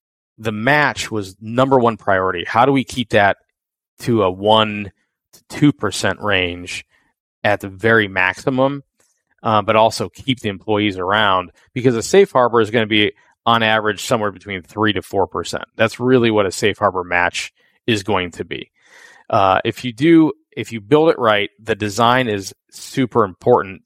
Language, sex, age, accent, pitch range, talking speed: English, male, 20-39, American, 100-125 Hz, 180 wpm